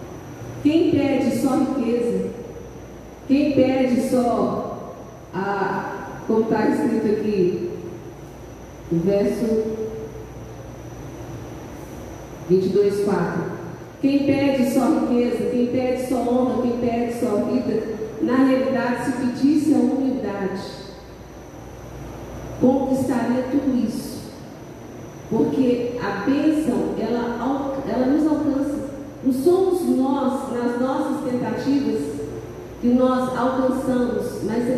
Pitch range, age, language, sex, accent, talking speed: 220-270 Hz, 40-59, Portuguese, female, Brazilian, 85 wpm